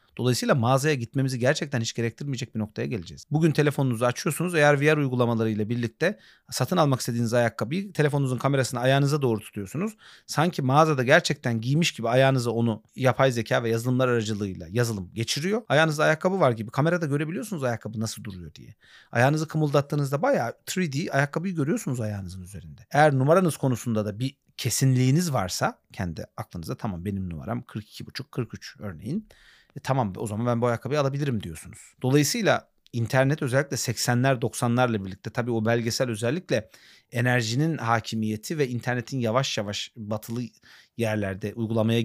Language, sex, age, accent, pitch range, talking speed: Turkish, male, 40-59, native, 110-140 Hz, 140 wpm